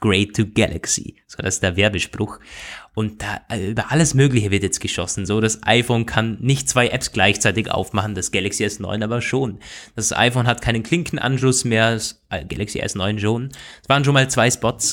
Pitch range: 110-135 Hz